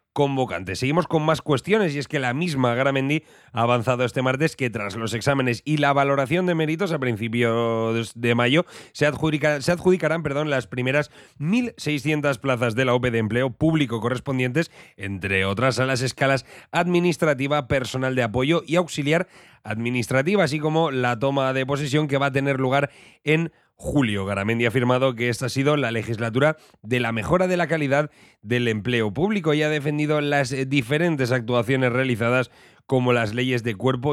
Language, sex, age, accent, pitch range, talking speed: Spanish, male, 30-49, Spanish, 120-150 Hz, 170 wpm